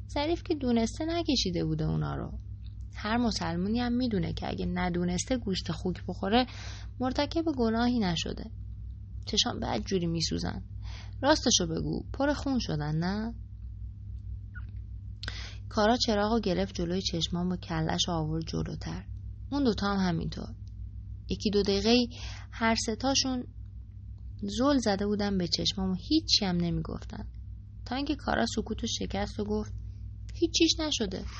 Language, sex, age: English, female, 20-39